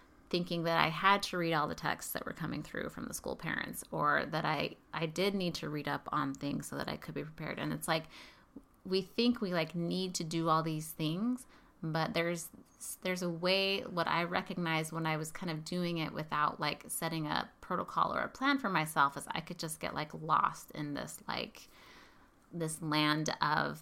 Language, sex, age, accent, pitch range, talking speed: English, female, 30-49, American, 155-180 Hz, 215 wpm